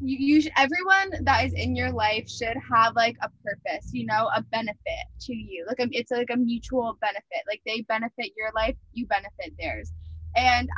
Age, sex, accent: 10-29, female, American